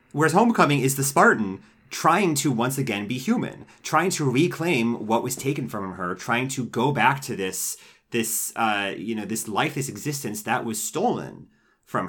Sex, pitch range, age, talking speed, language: male, 105-140 Hz, 30-49, 185 wpm, English